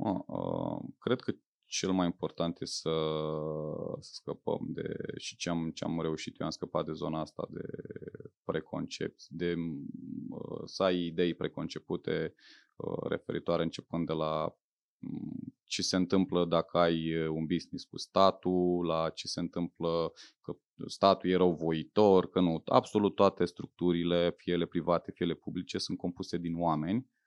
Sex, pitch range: male, 85-125 Hz